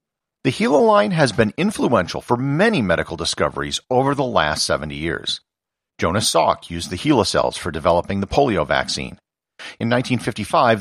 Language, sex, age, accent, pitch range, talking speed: English, male, 40-59, American, 100-160 Hz, 155 wpm